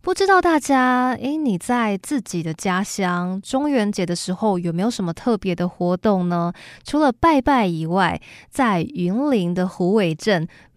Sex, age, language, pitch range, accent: female, 20-39, Chinese, 175-235 Hz, native